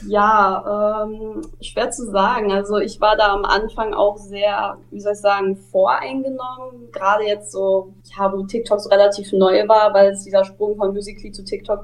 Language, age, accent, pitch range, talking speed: German, 20-39, German, 195-230 Hz, 185 wpm